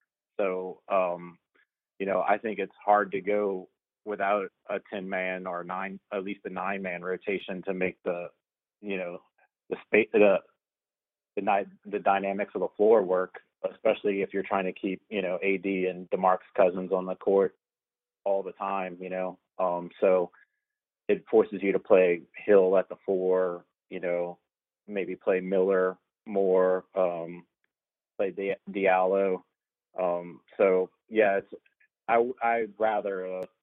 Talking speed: 155 wpm